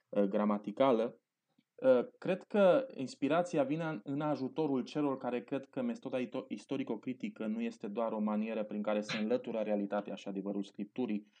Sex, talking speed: male, 130 wpm